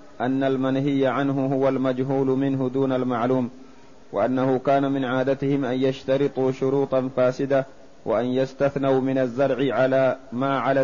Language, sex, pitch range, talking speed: Arabic, male, 130-135 Hz, 125 wpm